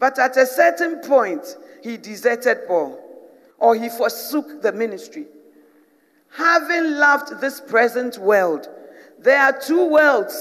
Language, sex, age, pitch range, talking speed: English, female, 50-69, 235-300 Hz, 125 wpm